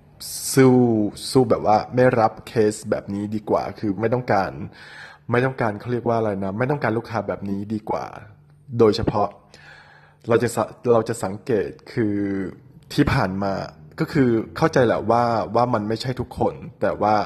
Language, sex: English, male